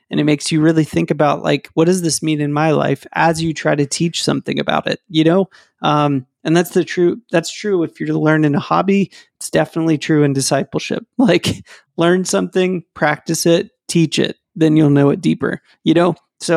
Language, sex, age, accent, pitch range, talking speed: English, male, 30-49, American, 145-170 Hz, 205 wpm